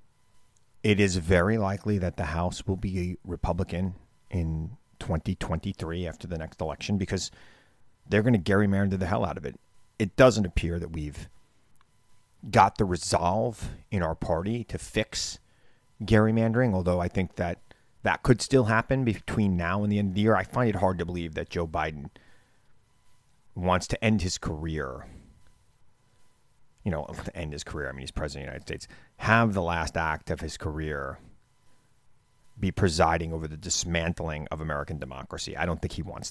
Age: 30-49